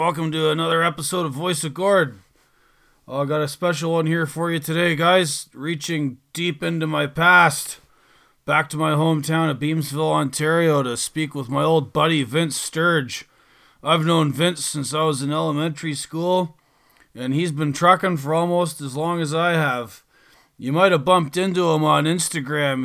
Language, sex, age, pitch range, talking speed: English, male, 30-49, 140-165 Hz, 170 wpm